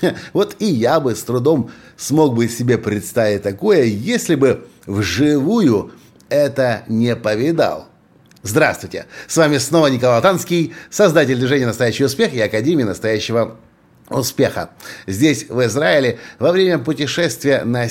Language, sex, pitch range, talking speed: Russian, male, 120-175 Hz, 125 wpm